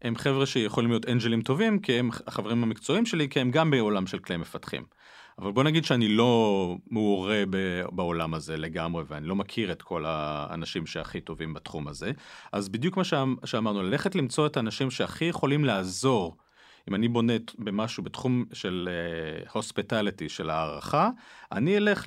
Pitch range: 100-150 Hz